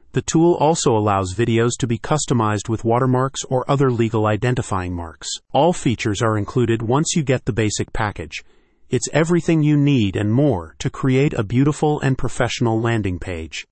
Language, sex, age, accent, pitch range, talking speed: English, male, 40-59, American, 110-135 Hz, 170 wpm